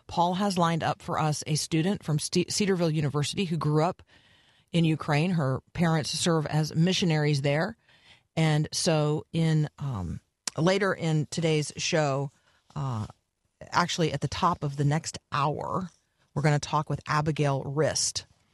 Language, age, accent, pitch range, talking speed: English, 40-59, American, 145-170 Hz, 150 wpm